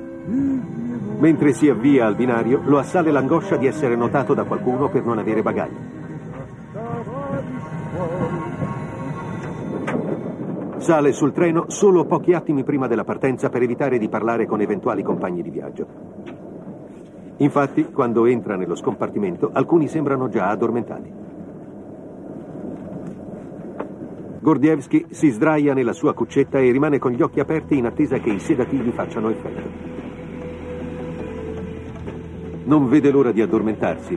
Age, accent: 50-69, native